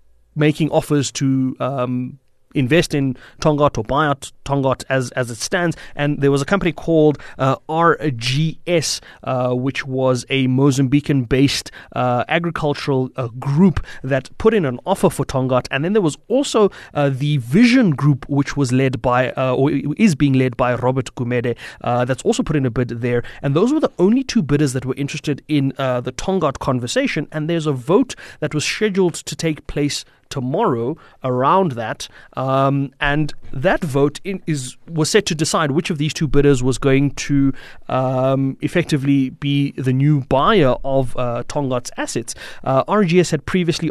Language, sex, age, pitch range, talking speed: English, male, 30-49, 130-160 Hz, 170 wpm